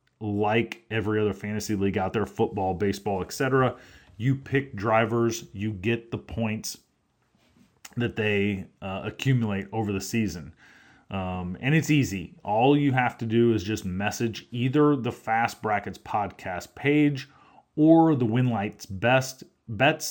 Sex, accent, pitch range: male, American, 100-125 Hz